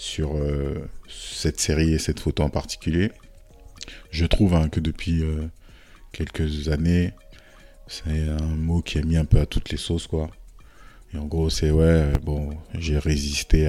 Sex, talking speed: male, 165 wpm